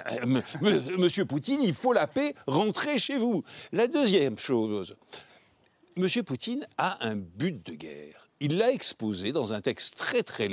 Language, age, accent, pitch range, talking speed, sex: French, 60-79, French, 130-205 Hz, 155 wpm, male